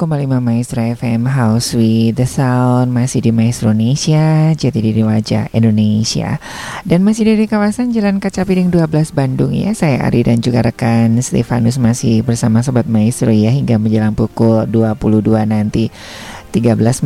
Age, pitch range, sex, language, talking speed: 20-39, 115-165 Hz, female, Indonesian, 145 wpm